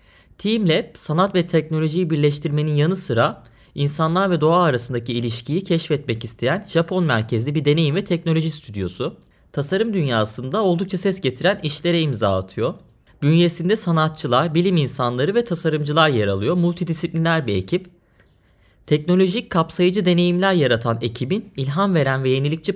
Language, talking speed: Turkish, 130 wpm